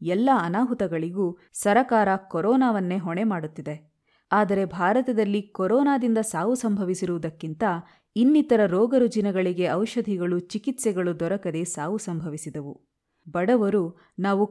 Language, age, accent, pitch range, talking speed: Kannada, 30-49, native, 170-220 Hz, 85 wpm